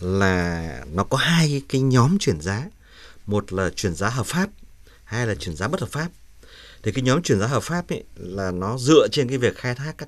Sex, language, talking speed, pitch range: male, Vietnamese, 225 wpm, 90-125 Hz